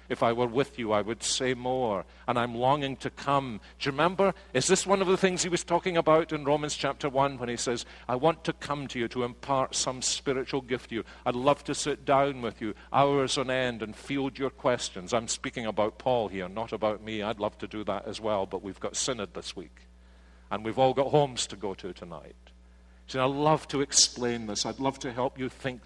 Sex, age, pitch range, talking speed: male, 50-69, 95-130 Hz, 240 wpm